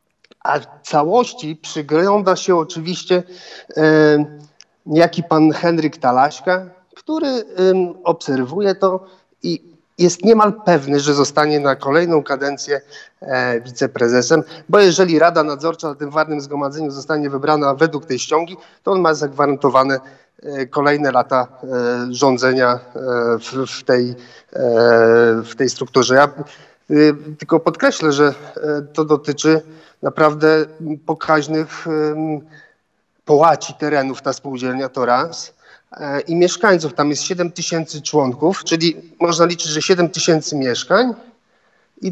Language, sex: Polish, male